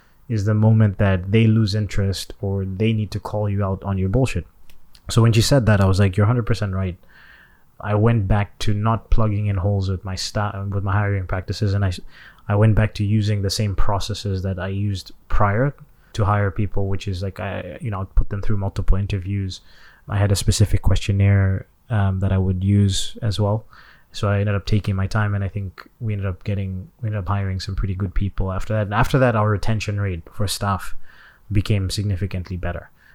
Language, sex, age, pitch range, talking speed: English, male, 20-39, 95-105 Hz, 215 wpm